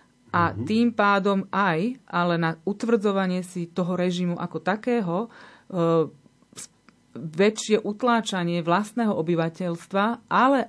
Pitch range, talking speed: 175-200 Hz, 95 wpm